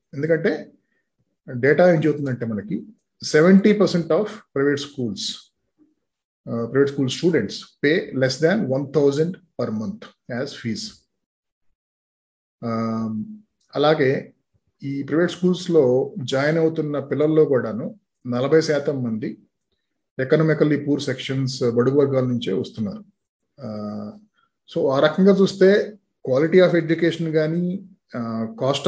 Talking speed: 100 wpm